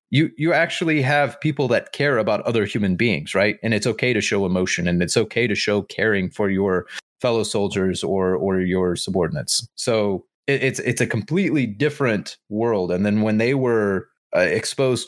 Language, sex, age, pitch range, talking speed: English, male, 30-49, 95-120 Hz, 185 wpm